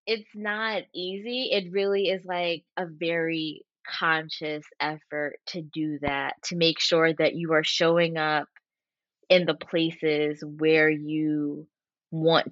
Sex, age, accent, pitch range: female, 20-39, American, 160-210 Hz